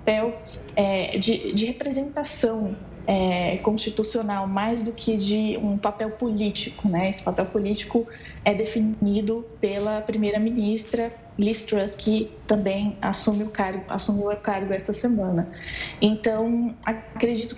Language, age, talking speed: Portuguese, 20-39, 120 wpm